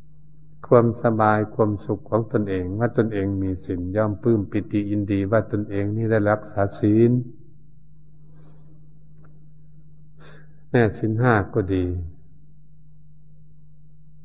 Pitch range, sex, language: 100-150 Hz, male, Thai